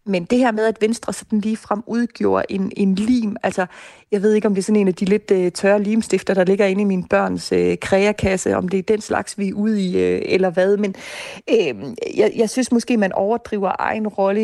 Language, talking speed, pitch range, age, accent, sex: Danish, 240 wpm, 190-220 Hz, 30-49, native, female